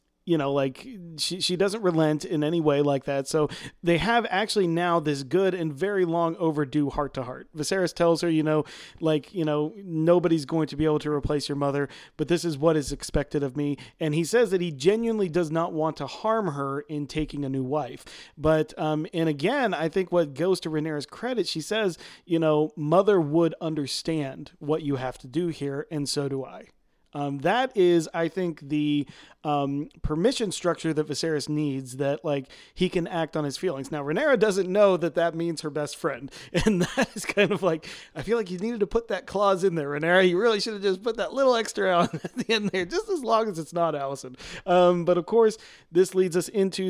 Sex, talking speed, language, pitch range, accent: male, 220 wpm, English, 150-185 Hz, American